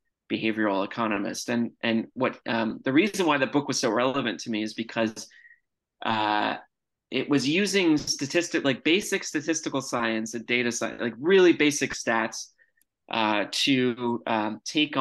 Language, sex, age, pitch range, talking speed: English, male, 30-49, 115-140 Hz, 150 wpm